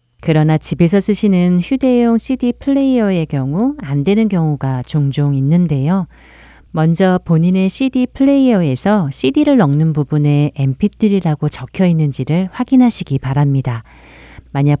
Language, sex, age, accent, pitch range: Korean, female, 40-59, native, 140-195 Hz